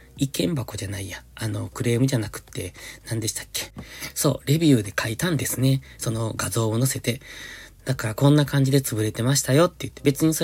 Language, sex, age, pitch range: Japanese, male, 20-39, 110-140 Hz